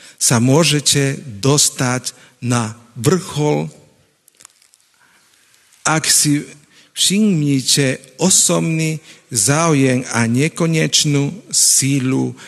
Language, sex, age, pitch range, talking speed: Slovak, male, 50-69, 125-160 Hz, 65 wpm